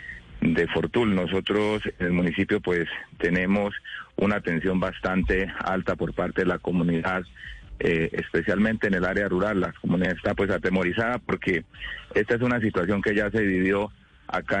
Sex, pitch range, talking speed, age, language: male, 90-100 Hz, 155 wpm, 40-59, Spanish